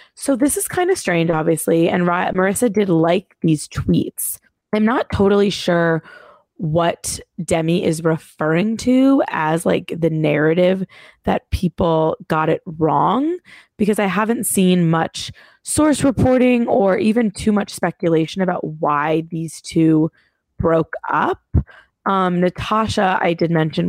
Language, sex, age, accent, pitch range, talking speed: English, female, 20-39, American, 165-210 Hz, 135 wpm